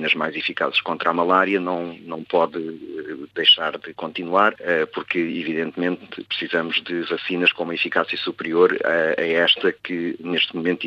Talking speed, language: 140 wpm, Portuguese